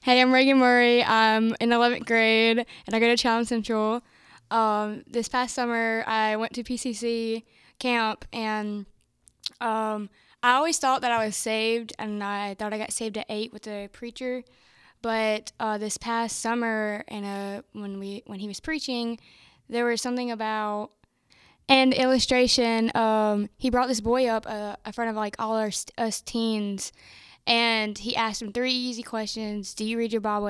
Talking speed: 175 wpm